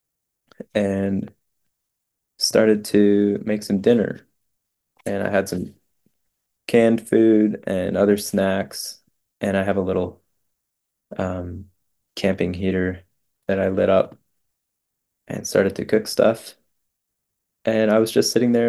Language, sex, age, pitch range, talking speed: English, male, 20-39, 95-105 Hz, 120 wpm